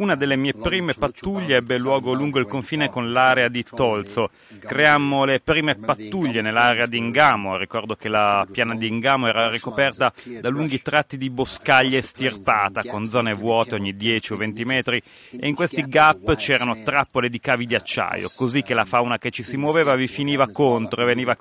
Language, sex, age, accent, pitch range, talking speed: Italian, male, 30-49, native, 115-140 Hz, 185 wpm